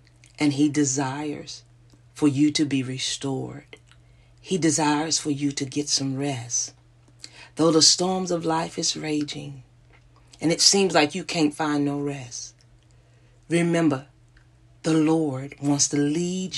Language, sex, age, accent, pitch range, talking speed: English, female, 40-59, American, 130-160 Hz, 140 wpm